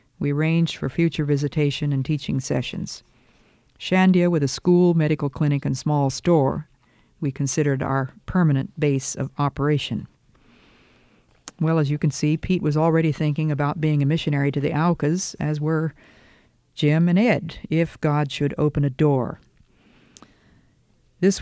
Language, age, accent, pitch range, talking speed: English, 50-69, American, 145-175 Hz, 145 wpm